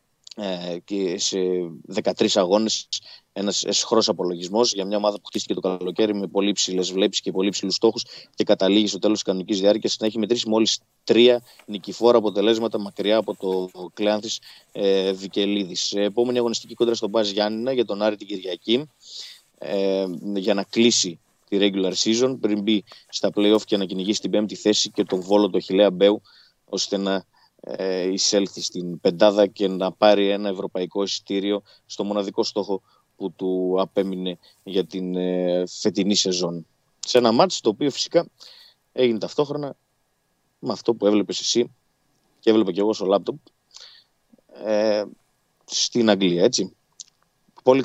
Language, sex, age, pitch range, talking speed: Greek, male, 20-39, 95-110 Hz, 150 wpm